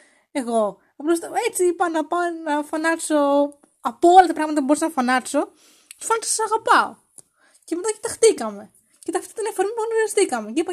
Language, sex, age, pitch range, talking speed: English, female, 20-39, 245-340 Hz, 175 wpm